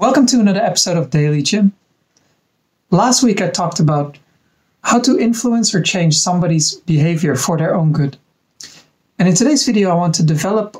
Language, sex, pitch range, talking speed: English, male, 160-215 Hz, 170 wpm